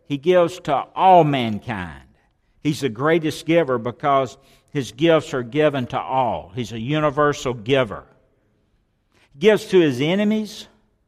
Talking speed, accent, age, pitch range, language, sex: 135 wpm, American, 60-79, 110-150 Hz, English, male